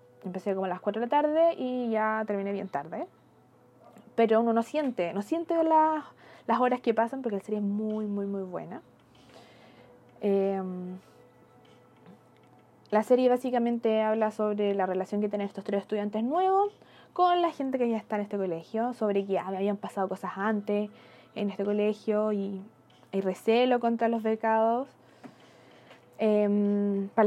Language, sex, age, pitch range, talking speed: Spanish, female, 20-39, 200-250 Hz, 160 wpm